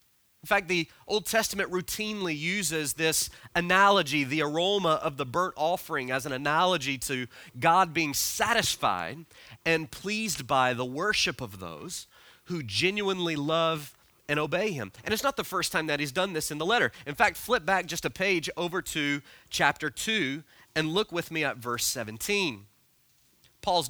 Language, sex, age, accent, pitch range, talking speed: English, male, 30-49, American, 145-195 Hz, 170 wpm